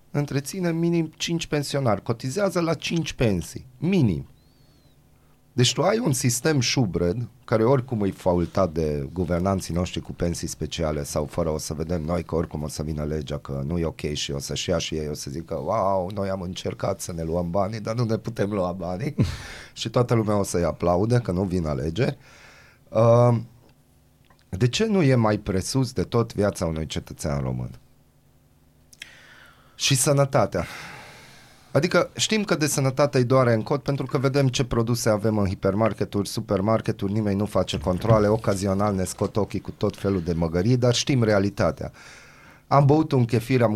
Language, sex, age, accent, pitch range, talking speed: Romanian, male, 30-49, native, 90-135 Hz, 175 wpm